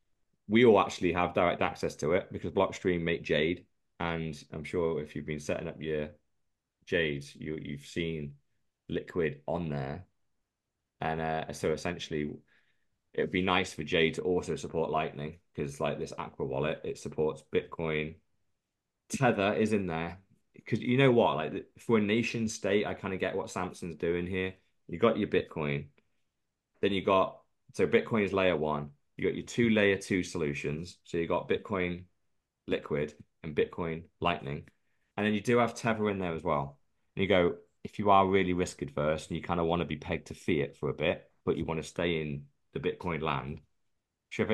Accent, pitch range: British, 80-100 Hz